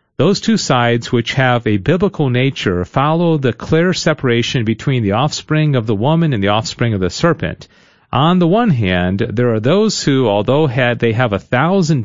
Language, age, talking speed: English, 40-59, 185 wpm